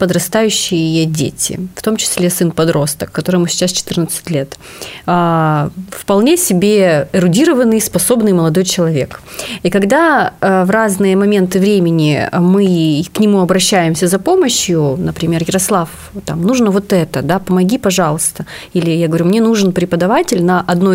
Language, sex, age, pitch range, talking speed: Russian, female, 30-49, 170-215 Hz, 140 wpm